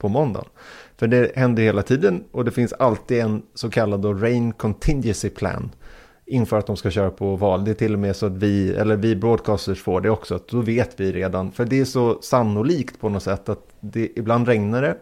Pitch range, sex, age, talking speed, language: 100-120 Hz, male, 30-49, 220 wpm, Swedish